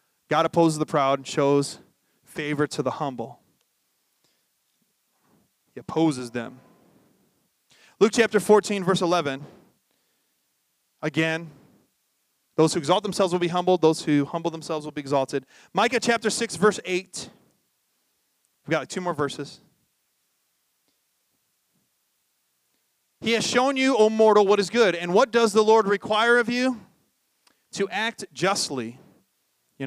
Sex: male